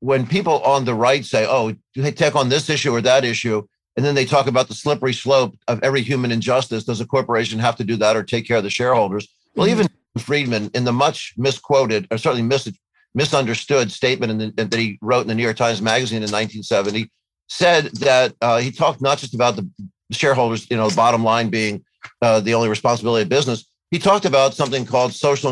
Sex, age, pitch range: male, 50-69, 115-135 Hz